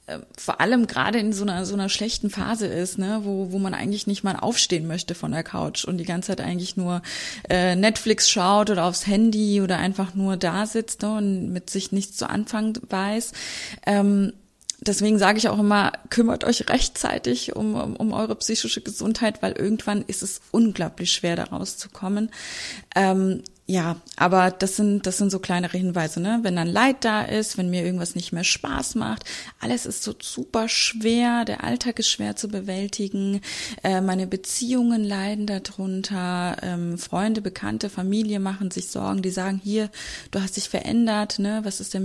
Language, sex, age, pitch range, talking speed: German, female, 20-39, 185-215 Hz, 185 wpm